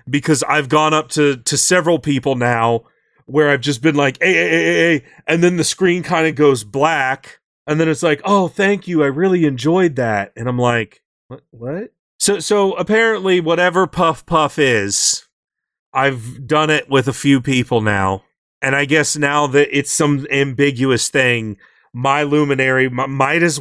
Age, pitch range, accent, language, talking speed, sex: 30-49, 130-170 Hz, American, English, 180 wpm, male